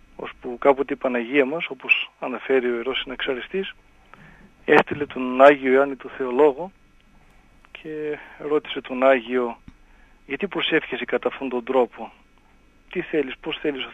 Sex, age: male, 40-59